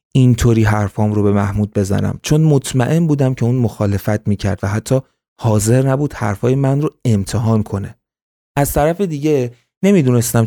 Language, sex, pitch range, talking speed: Persian, male, 110-140 Hz, 150 wpm